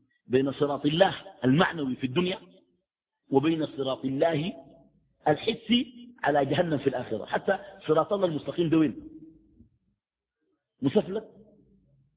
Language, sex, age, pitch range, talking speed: Arabic, male, 50-69, 150-225 Hz, 105 wpm